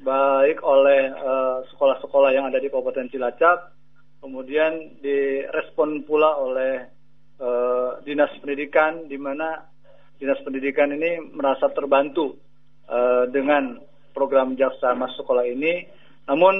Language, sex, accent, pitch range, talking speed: Indonesian, male, native, 135-160 Hz, 110 wpm